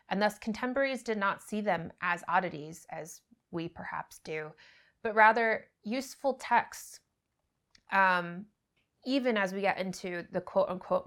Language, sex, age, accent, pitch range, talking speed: English, female, 20-39, American, 160-220 Hz, 140 wpm